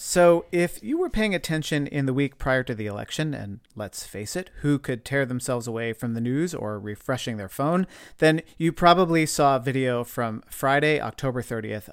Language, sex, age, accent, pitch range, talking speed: English, male, 40-59, American, 115-150 Hz, 195 wpm